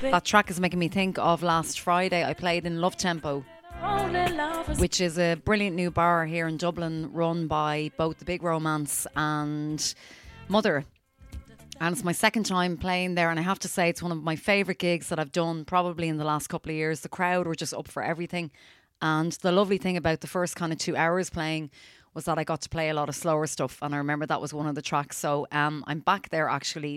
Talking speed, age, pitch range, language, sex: 230 wpm, 30-49, 150-175 Hz, English, female